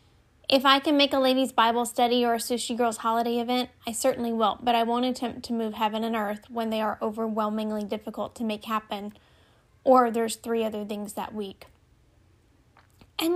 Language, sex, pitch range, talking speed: English, female, 225-260 Hz, 190 wpm